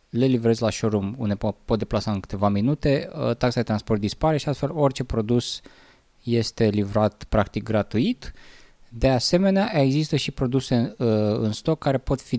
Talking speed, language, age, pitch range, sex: 160 wpm, Romanian, 20-39, 105-135 Hz, male